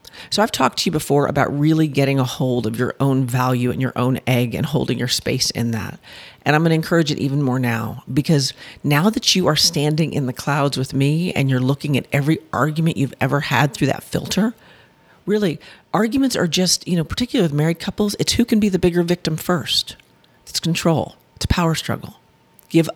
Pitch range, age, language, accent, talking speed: 135-180 Hz, 50-69, English, American, 215 wpm